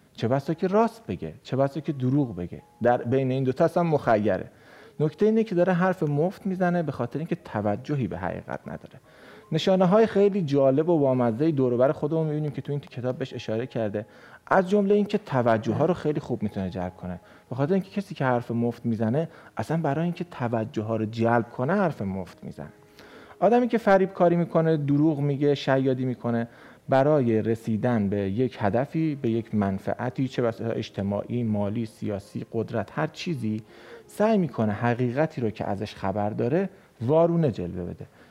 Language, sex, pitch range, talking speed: Persian, male, 110-160 Hz, 170 wpm